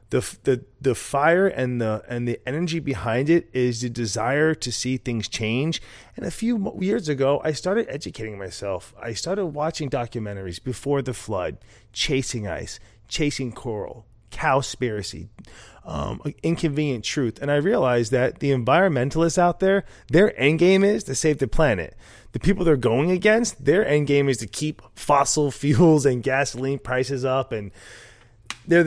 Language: English